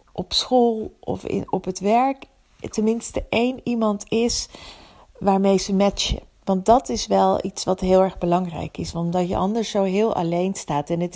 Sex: female